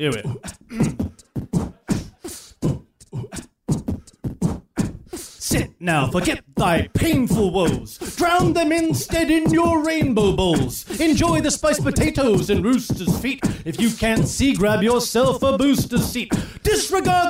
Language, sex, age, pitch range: English, male, 30-49, 225-280 Hz